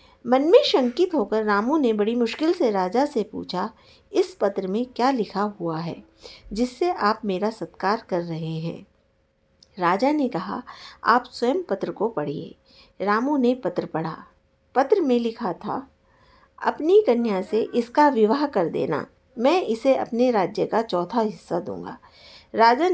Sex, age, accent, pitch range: female, 50-69, native, 205-275 Hz